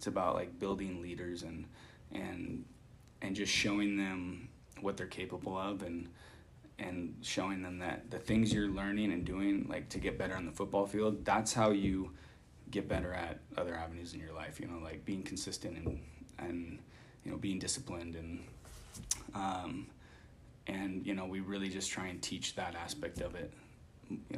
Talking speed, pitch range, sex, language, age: 175 wpm, 95-110 Hz, male, English, 20-39